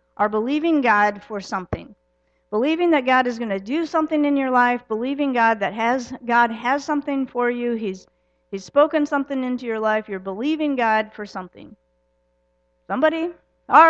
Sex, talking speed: female, 170 wpm